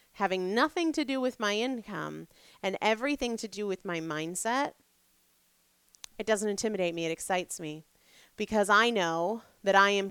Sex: female